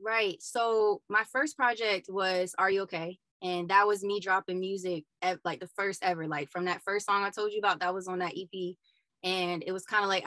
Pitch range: 180-220 Hz